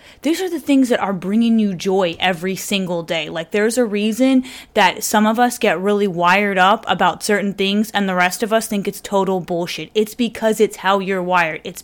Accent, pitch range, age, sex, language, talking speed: American, 185-210 Hz, 20-39, female, English, 220 wpm